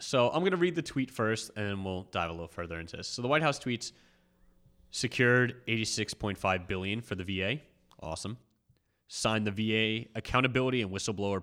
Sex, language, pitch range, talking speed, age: male, English, 95-125 Hz, 185 wpm, 30-49